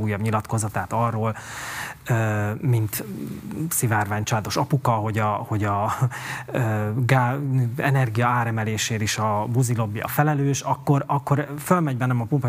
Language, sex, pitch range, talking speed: Hungarian, male, 115-150 Hz, 115 wpm